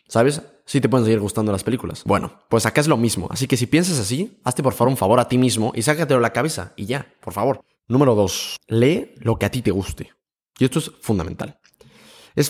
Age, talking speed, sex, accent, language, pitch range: 20-39, 240 wpm, male, Mexican, Spanish, 105-135 Hz